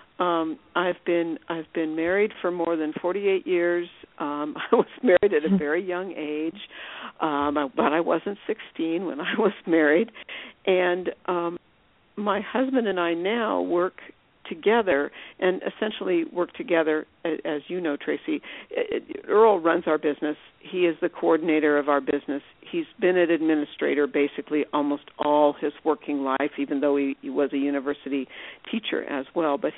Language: English